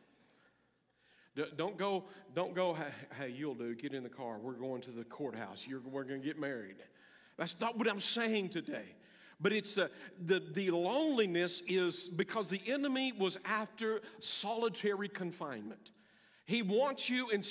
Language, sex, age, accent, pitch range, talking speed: English, male, 50-69, American, 150-200 Hz, 160 wpm